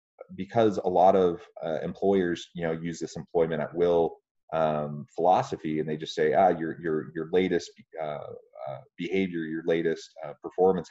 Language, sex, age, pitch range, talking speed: English, male, 30-49, 80-95 Hz, 165 wpm